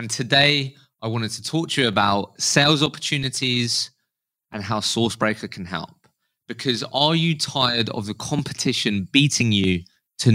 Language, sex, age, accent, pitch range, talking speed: English, male, 20-39, British, 105-145 Hz, 150 wpm